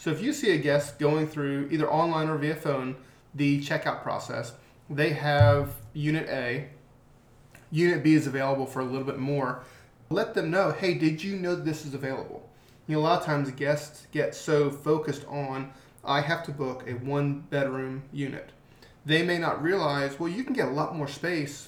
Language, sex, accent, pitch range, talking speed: English, male, American, 130-155 Hz, 190 wpm